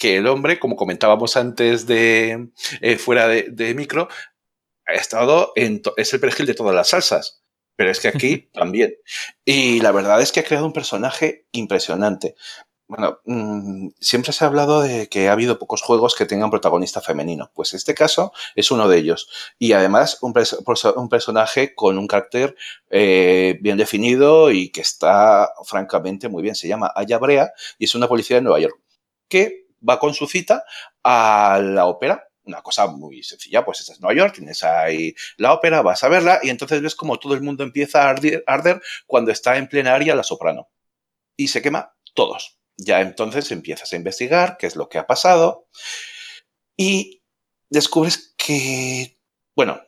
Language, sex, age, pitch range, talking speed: Spanish, male, 40-59, 115-160 Hz, 180 wpm